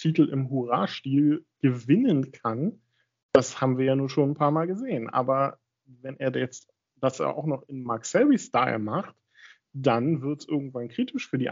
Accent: German